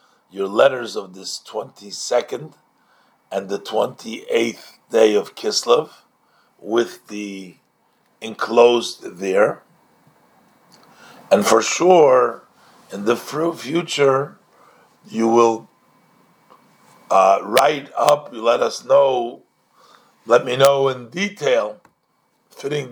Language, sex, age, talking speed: English, male, 50-69, 100 wpm